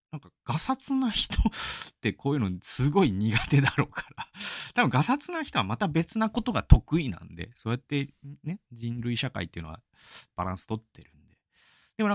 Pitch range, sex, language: 95-160 Hz, male, Japanese